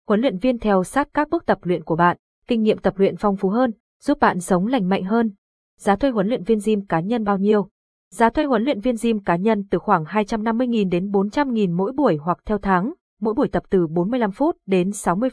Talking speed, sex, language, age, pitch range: 235 wpm, female, Vietnamese, 20-39, 185-235 Hz